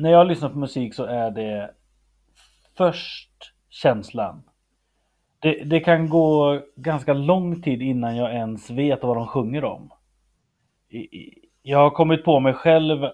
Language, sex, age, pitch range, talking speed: Swedish, male, 30-49, 125-160 Hz, 140 wpm